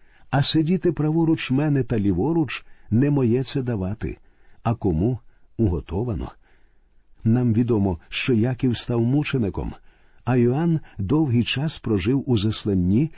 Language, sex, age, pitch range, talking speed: Ukrainian, male, 50-69, 105-145 Hz, 120 wpm